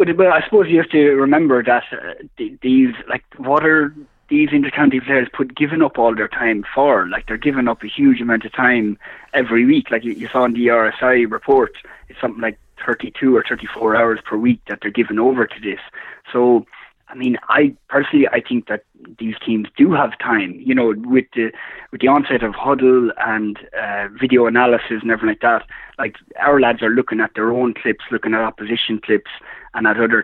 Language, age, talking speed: English, 20-39, 205 wpm